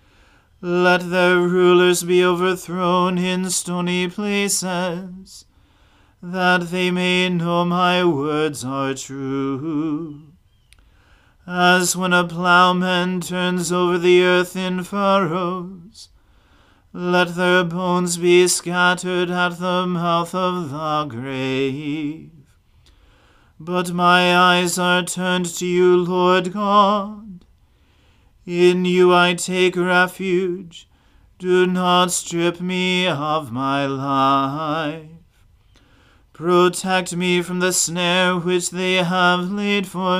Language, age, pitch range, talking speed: English, 40-59, 150-180 Hz, 100 wpm